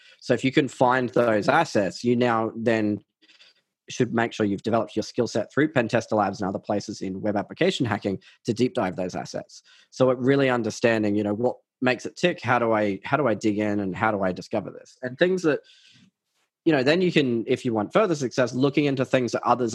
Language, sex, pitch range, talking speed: English, male, 110-135 Hz, 230 wpm